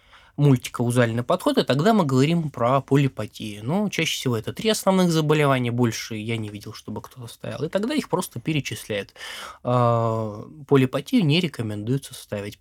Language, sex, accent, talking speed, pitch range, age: Russian, male, native, 150 wpm, 115-145 Hz, 20-39